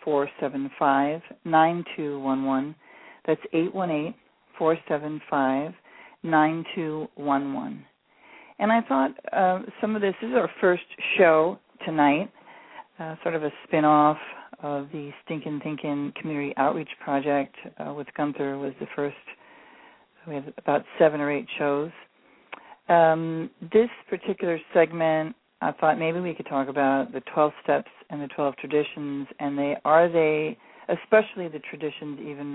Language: English